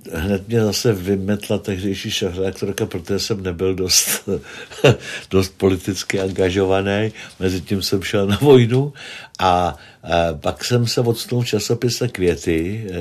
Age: 60-79